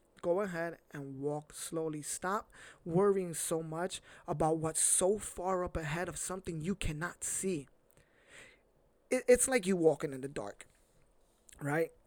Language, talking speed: English, 140 wpm